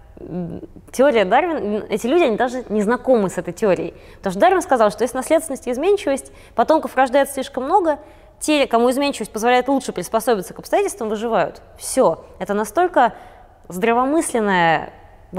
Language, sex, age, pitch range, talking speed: Russian, female, 20-39, 185-250 Hz, 150 wpm